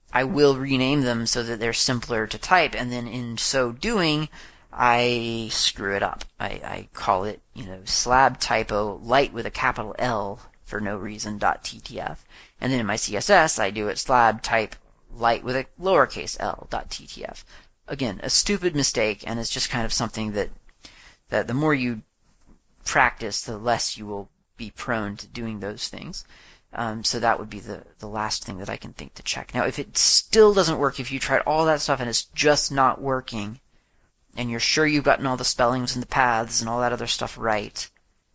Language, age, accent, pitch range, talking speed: English, 30-49, American, 110-130 Hz, 200 wpm